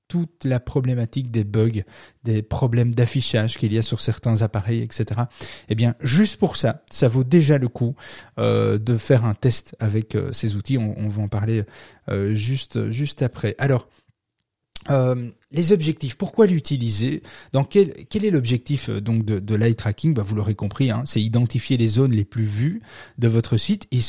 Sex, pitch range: male, 115-145 Hz